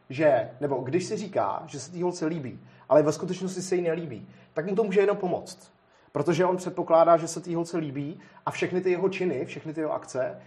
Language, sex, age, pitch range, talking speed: Czech, male, 30-49, 135-175 Hz, 225 wpm